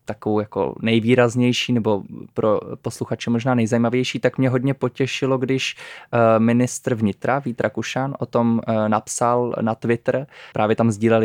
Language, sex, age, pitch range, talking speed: Czech, male, 20-39, 110-125 Hz, 135 wpm